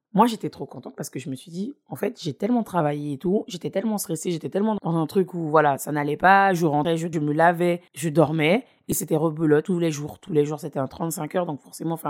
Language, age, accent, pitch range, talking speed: French, 20-39, French, 150-200 Hz, 265 wpm